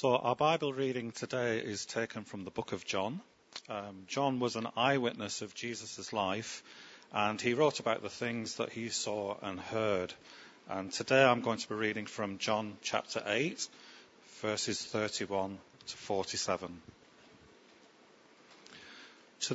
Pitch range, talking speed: 105-140 Hz, 145 wpm